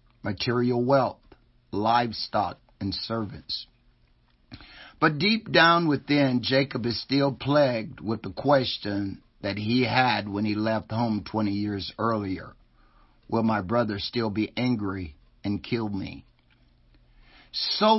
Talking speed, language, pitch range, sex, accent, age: 120 wpm, English, 105-130 Hz, male, American, 50-69